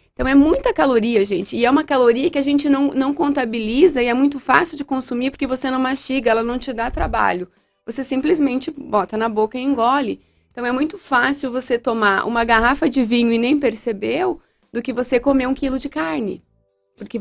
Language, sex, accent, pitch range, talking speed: Portuguese, female, Brazilian, 210-265 Hz, 205 wpm